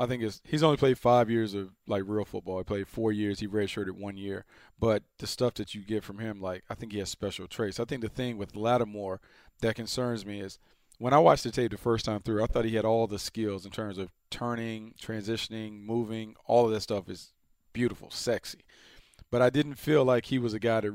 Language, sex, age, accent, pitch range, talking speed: English, male, 40-59, American, 105-125 Hz, 240 wpm